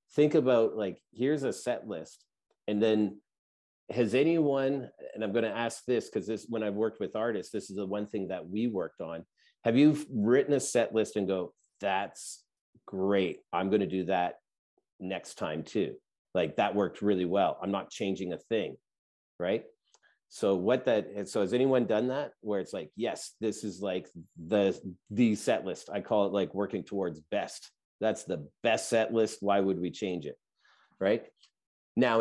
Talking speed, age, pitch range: 185 wpm, 40-59, 95-115 Hz